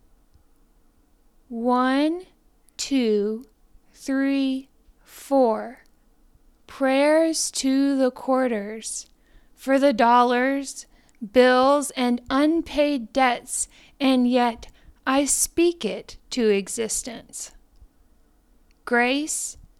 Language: English